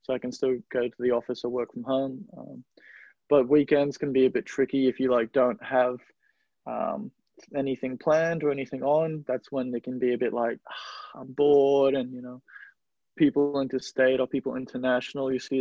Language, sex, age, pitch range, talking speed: English, male, 20-39, 125-140 Hz, 200 wpm